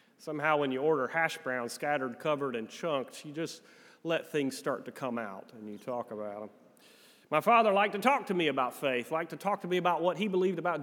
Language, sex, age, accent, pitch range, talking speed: English, male, 30-49, American, 150-215 Hz, 235 wpm